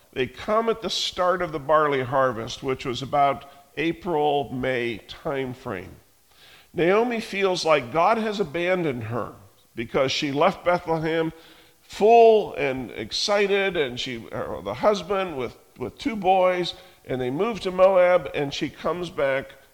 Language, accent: English, American